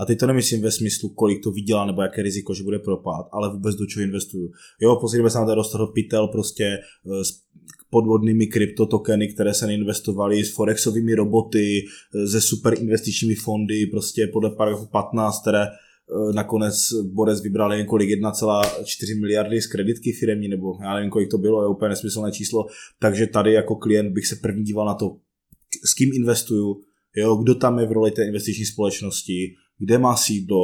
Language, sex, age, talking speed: Czech, male, 20-39, 180 wpm